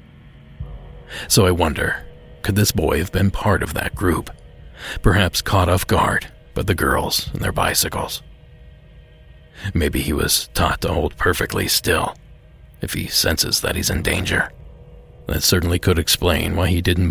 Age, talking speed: 40-59, 155 wpm